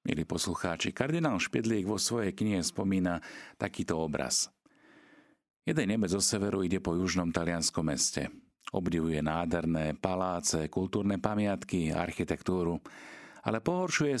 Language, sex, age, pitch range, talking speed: Slovak, male, 40-59, 80-105 Hz, 115 wpm